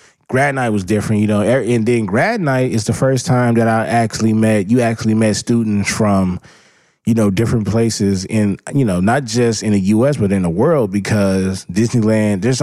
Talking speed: 200 wpm